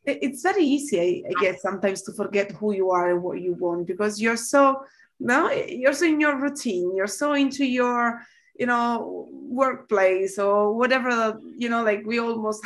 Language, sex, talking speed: English, female, 180 wpm